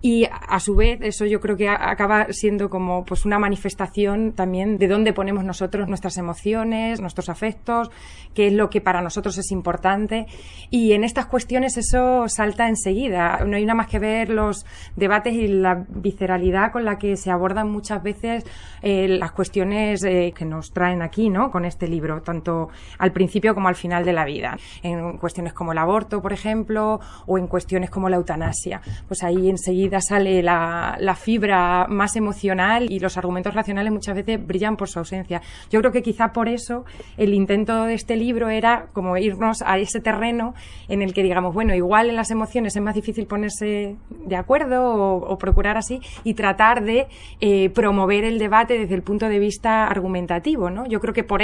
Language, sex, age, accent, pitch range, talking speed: Spanish, female, 20-39, Spanish, 185-220 Hz, 190 wpm